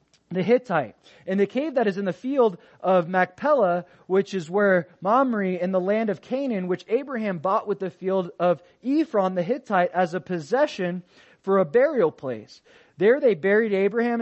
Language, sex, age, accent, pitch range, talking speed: English, male, 20-39, American, 175-210 Hz, 175 wpm